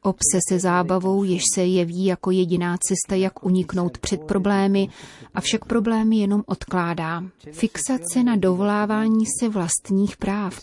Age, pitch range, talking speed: 30-49, 180-205 Hz, 135 wpm